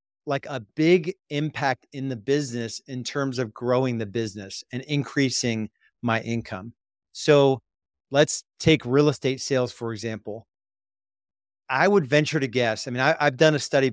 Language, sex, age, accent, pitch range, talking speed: English, male, 40-59, American, 110-140 Hz, 160 wpm